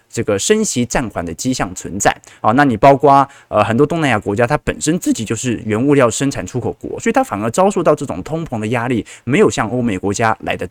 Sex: male